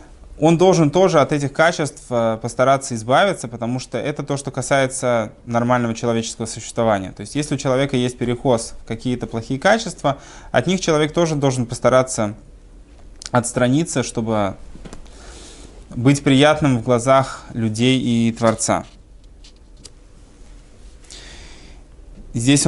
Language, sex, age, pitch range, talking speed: Russian, male, 20-39, 115-140 Hz, 115 wpm